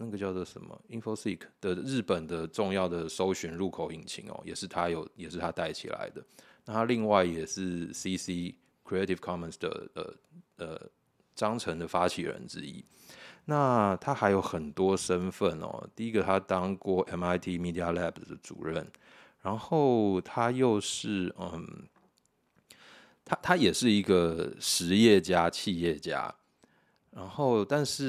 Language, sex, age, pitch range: Chinese, male, 20-39, 85-105 Hz